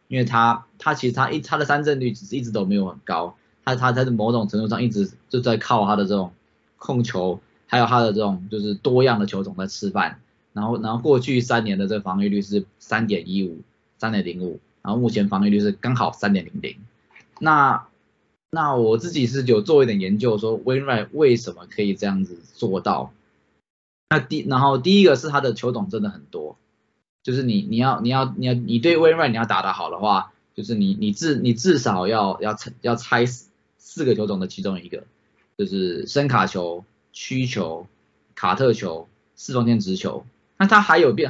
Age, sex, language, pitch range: 20-39, male, Chinese, 100-130 Hz